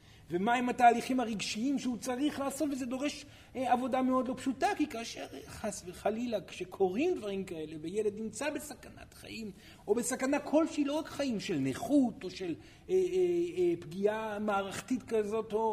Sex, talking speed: male, 155 wpm